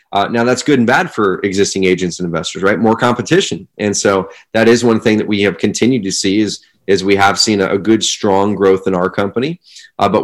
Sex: male